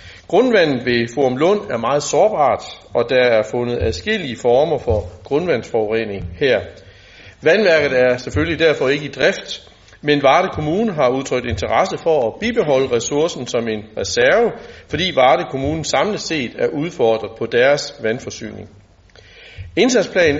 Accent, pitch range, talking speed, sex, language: native, 115-155 Hz, 140 wpm, male, Danish